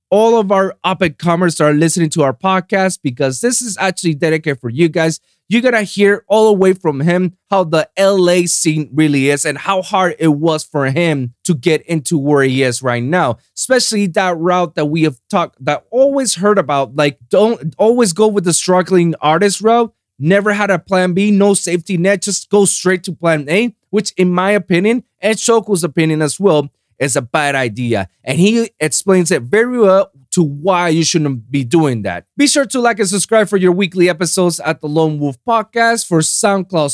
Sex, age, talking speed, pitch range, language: male, 20-39, 205 wpm, 155-205 Hz, English